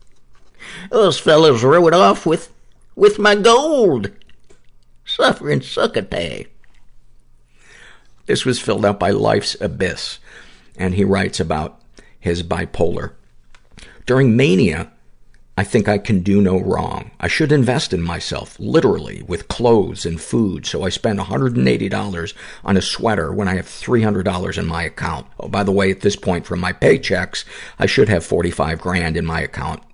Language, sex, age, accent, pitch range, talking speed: English, male, 50-69, American, 80-105 Hz, 160 wpm